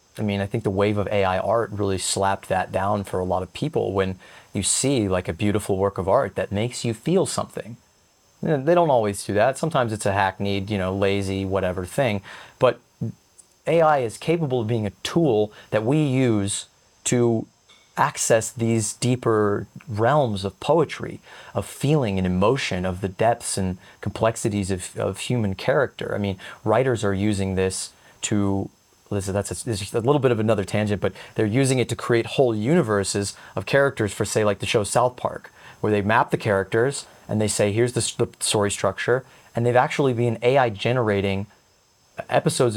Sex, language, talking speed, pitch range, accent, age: male, English, 180 wpm, 100-130 Hz, American, 30-49